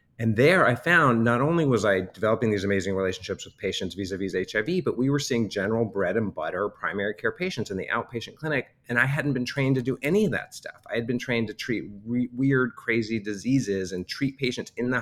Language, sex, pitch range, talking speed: English, male, 95-120 Hz, 225 wpm